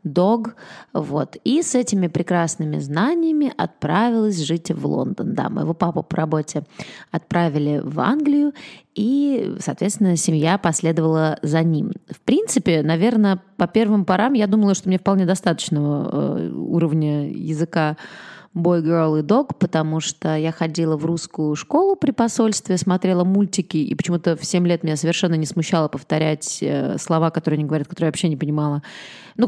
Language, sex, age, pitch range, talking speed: Russian, female, 20-39, 155-210 Hz, 150 wpm